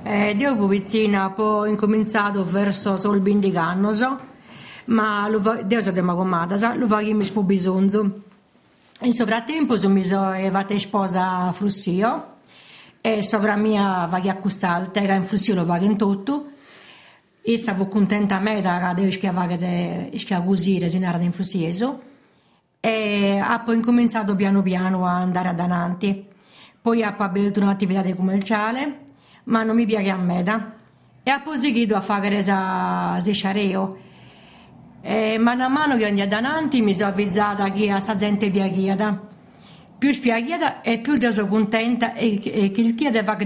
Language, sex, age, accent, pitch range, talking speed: Italian, female, 50-69, native, 195-220 Hz, 170 wpm